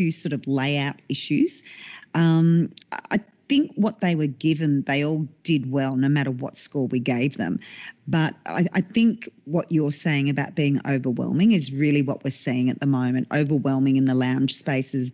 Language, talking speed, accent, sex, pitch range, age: English, 180 wpm, Australian, female, 140-170 Hz, 40-59